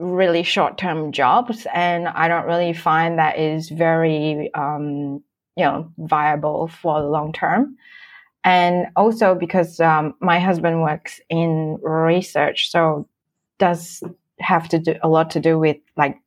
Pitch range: 160-190 Hz